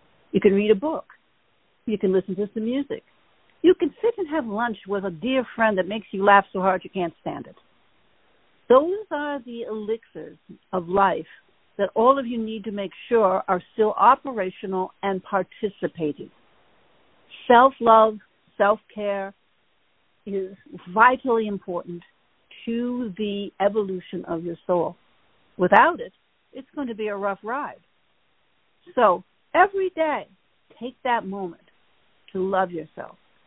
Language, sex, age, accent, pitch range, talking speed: English, female, 60-79, American, 195-265 Hz, 140 wpm